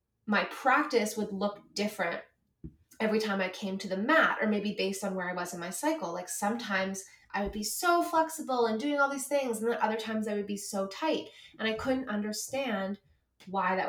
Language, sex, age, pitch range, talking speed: English, female, 20-39, 180-220 Hz, 210 wpm